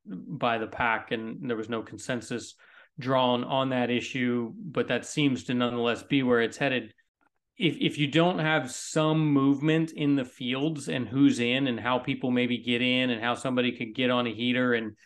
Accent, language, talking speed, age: American, English, 195 wpm, 30-49